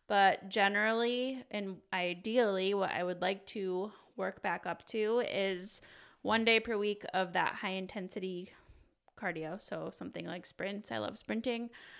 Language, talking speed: English, 150 wpm